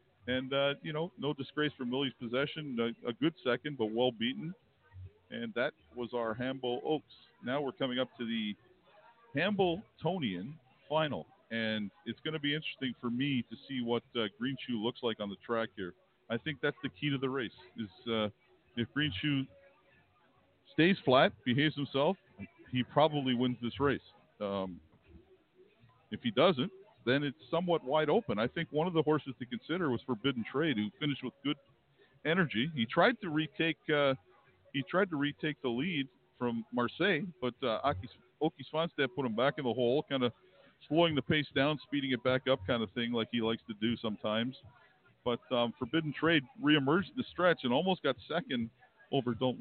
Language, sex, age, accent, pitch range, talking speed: English, male, 50-69, American, 120-150 Hz, 185 wpm